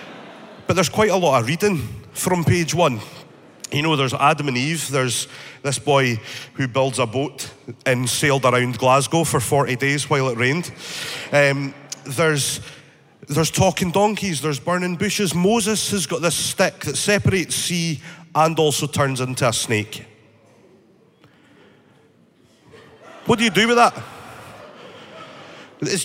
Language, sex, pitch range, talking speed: English, male, 135-185 Hz, 145 wpm